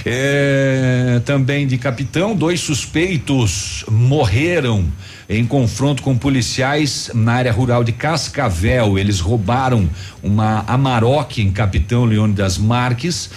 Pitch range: 95-125 Hz